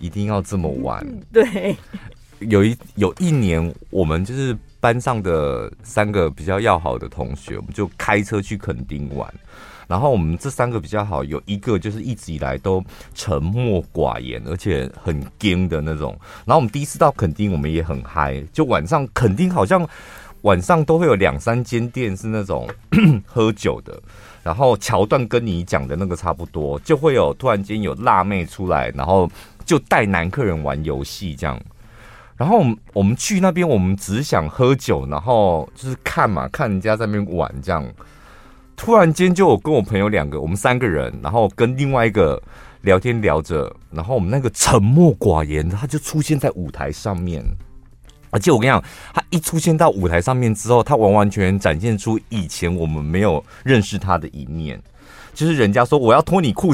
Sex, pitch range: male, 85-130 Hz